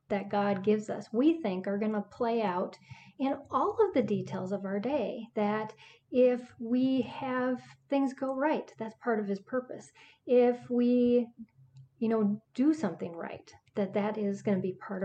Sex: female